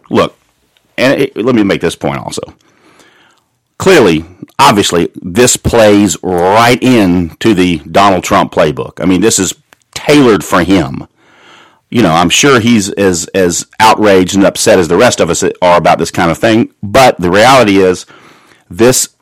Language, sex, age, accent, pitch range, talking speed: English, male, 40-59, American, 90-110 Hz, 165 wpm